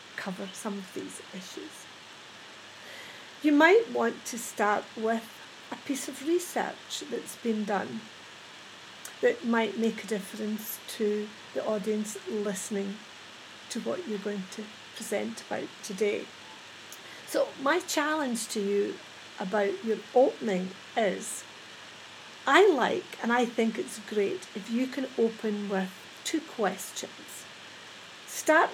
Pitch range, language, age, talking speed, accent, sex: 210-260 Hz, English, 50-69, 125 wpm, British, female